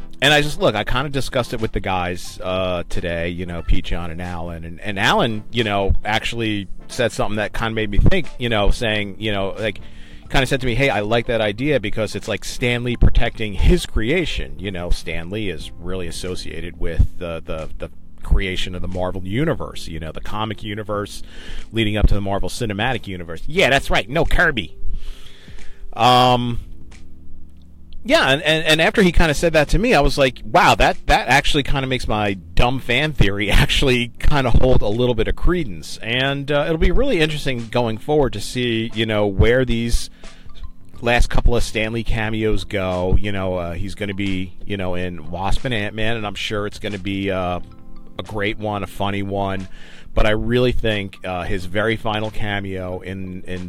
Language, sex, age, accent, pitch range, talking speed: English, male, 40-59, American, 90-115 Hz, 205 wpm